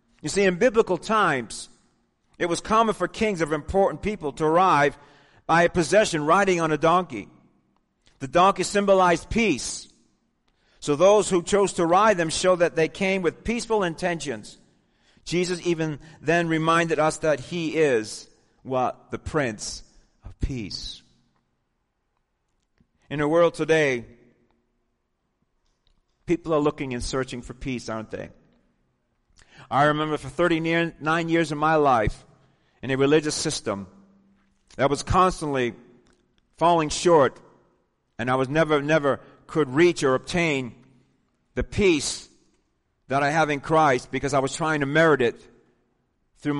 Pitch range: 135-170 Hz